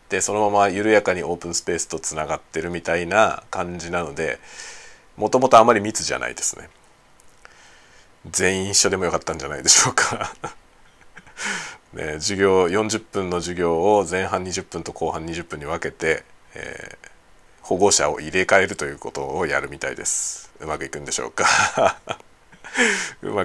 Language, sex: Japanese, male